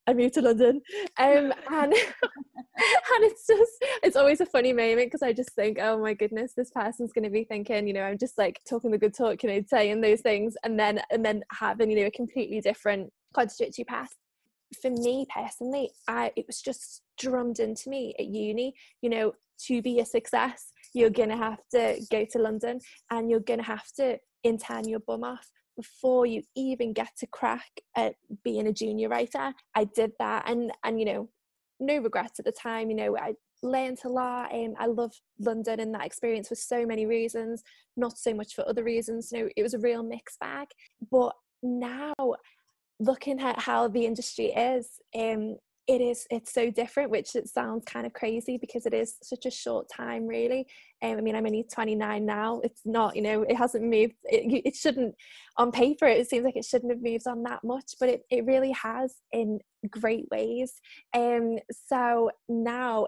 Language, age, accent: English, 10-29, British